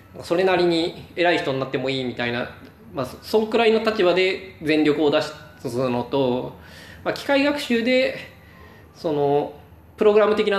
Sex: male